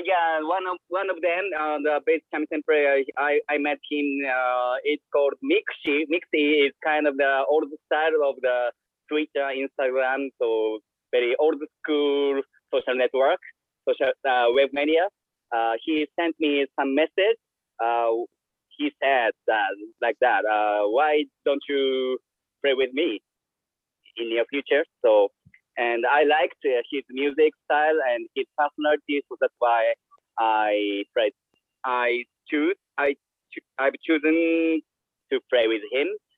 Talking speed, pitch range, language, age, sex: 145 wpm, 130-180 Hz, English, 30-49, male